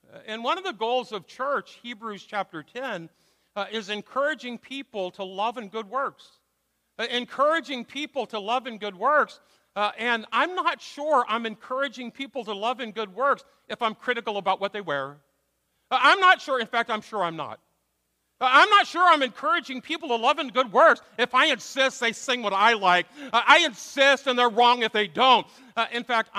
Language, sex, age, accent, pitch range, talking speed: English, male, 50-69, American, 195-265 Hz, 195 wpm